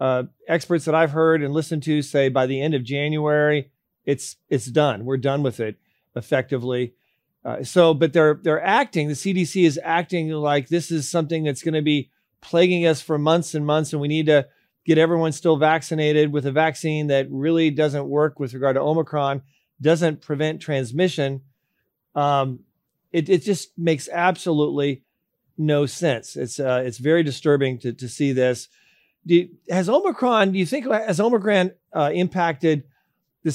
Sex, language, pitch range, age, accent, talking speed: male, English, 140-170 Hz, 40-59, American, 175 wpm